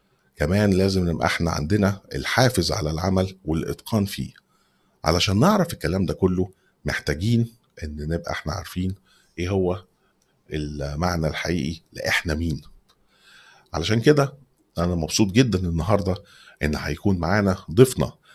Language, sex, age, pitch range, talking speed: Arabic, male, 50-69, 80-105 Hz, 120 wpm